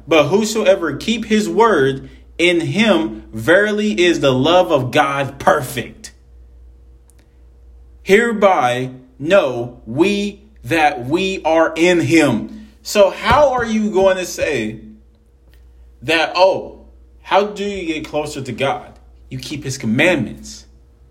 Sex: male